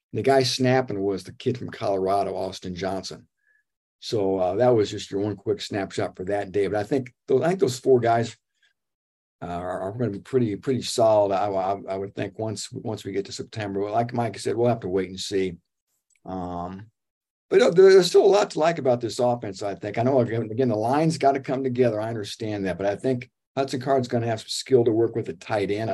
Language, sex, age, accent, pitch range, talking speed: English, male, 50-69, American, 100-125 Hz, 240 wpm